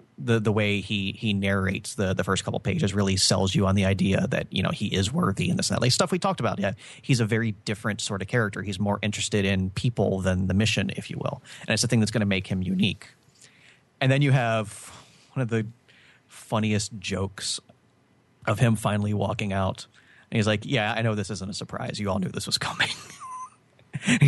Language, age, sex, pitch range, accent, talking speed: English, 30-49, male, 100-125 Hz, American, 225 wpm